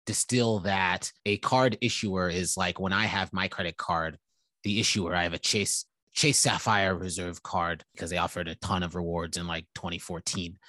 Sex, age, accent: male, 30-49, American